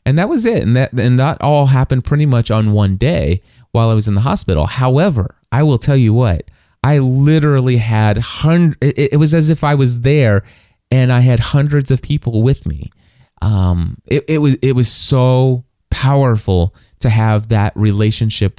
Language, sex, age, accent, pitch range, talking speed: English, male, 20-39, American, 105-140 Hz, 185 wpm